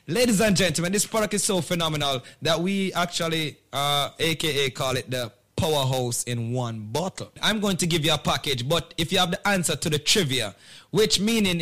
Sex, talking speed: male, 195 wpm